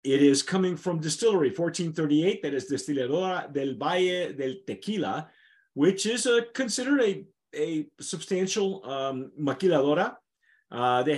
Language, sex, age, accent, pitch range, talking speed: English, male, 40-59, American, 125-185 Hz, 125 wpm